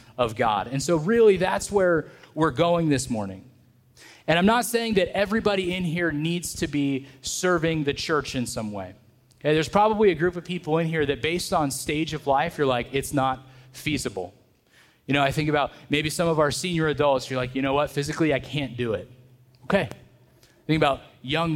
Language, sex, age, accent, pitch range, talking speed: English, male, 30-49, American, 135-175 Hz, 205 wpm